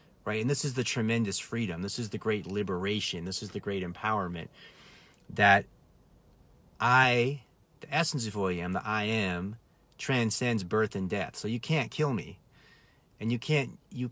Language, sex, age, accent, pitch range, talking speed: English, male, 30-49, American, 100-130 Hz, 175 wpm